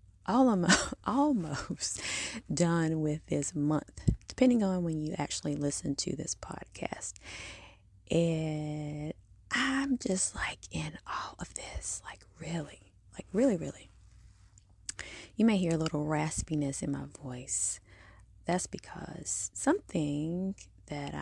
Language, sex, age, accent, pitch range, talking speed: English, female, 20-39, American, 100-165 Hz, 120 wpm